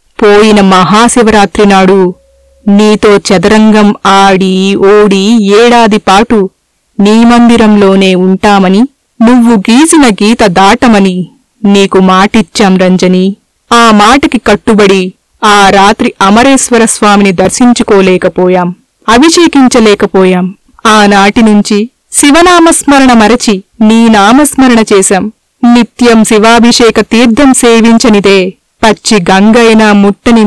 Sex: female